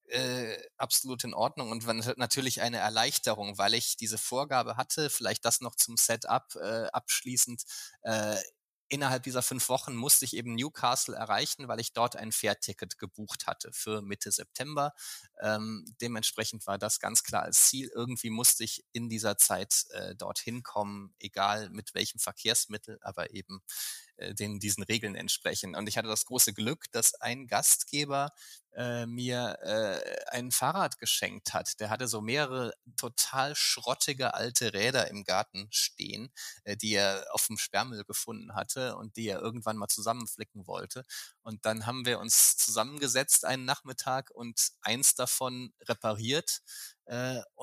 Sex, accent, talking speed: male, German, 155 wpm